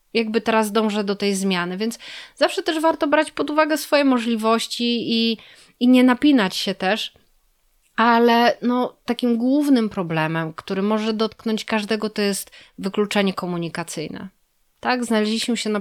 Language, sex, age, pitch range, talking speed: Polish, female, 30-49, 205-240 Hz, 145 wpm